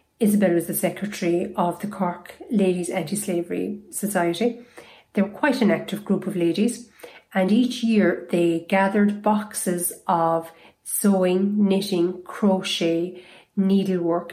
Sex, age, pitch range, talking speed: female, 40-59, 175-205 Hz, 120 wpm